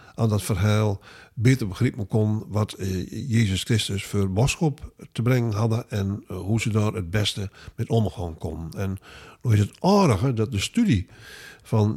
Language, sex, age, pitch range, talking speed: Dutch, male, 50-69, 100-125 Hz, 170 wpm